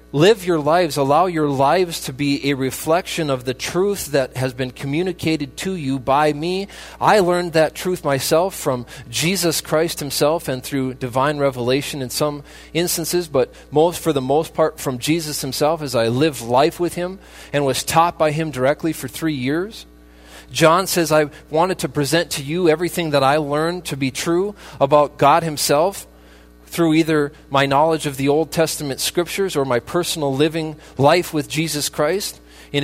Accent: American